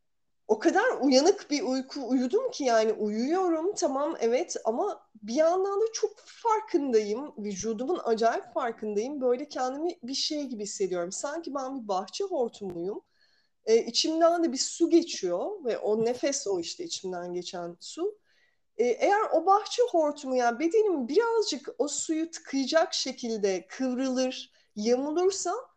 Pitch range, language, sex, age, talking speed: 230-360 Hz, Turkish, female, 30-49, 135 wpm